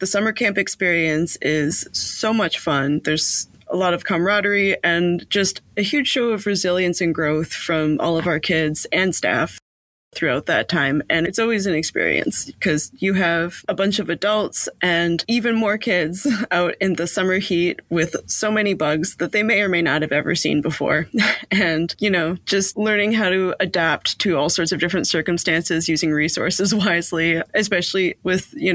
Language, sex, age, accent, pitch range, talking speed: English, female, 20-39, American, 170-200 Hz, 180 wpm